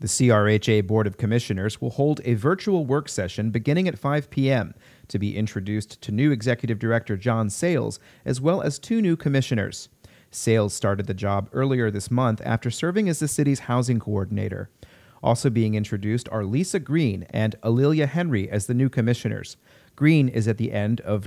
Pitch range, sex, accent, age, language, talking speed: 110-145 Hz, male, American, 40-59, English, 180 wpm